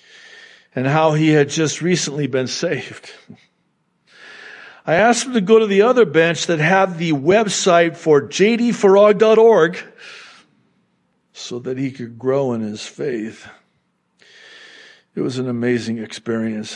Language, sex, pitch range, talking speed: English, male, 115-170 Hz, 130 wpm